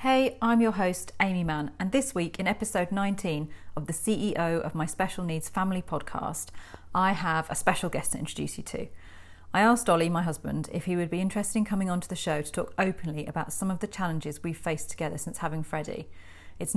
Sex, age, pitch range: female, 40-59, 160-190 Hz